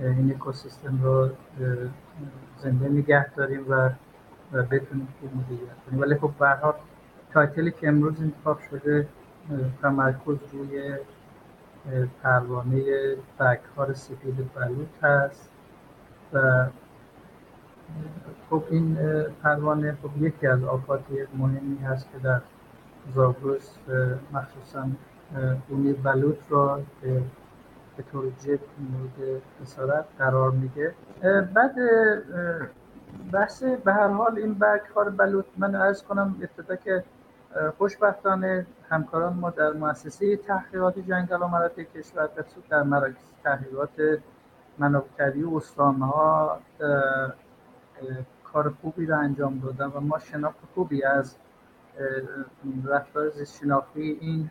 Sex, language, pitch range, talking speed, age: male, Persian, 135-155 Hz, 100 wpm, 60-79